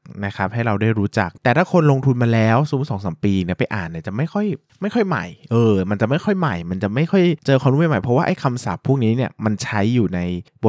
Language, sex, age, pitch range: Thai, male, 20-39, 100-135 Hz